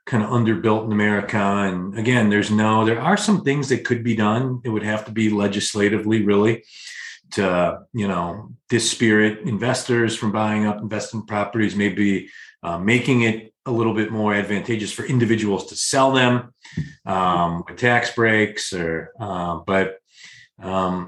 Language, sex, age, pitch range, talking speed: English, male, 40-59, 105-120 Hz, 160 wpm